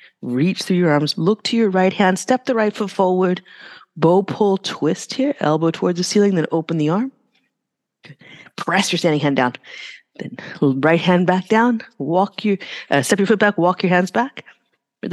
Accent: American